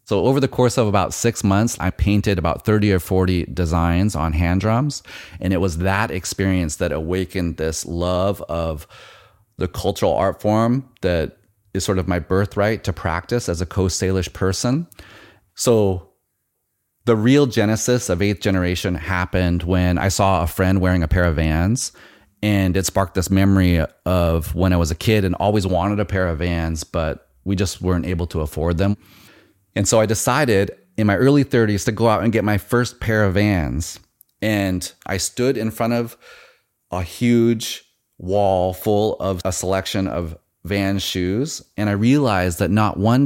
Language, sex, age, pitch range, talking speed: English, male, 30-49, 90-105 Hz, 180 wpm